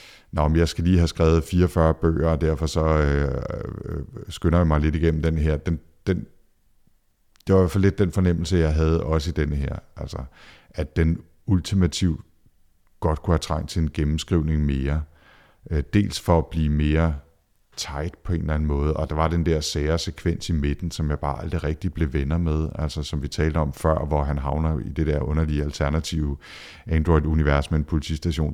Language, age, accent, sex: Danish, 60-79, native, male